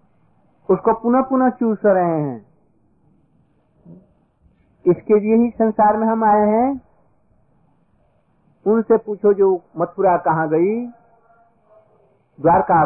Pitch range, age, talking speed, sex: 160-210 Hz, 50-69, 100 wpm, male